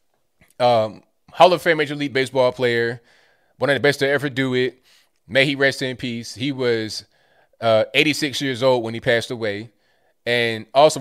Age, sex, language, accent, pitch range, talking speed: 20-39, male, English, American, 115-145 Hz, 180 wpm